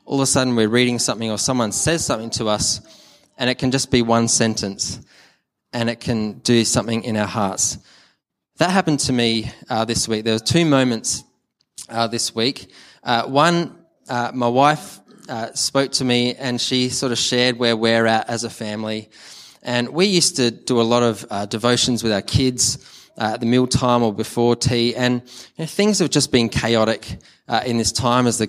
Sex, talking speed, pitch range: male, 205 wpm, 110-125 Hz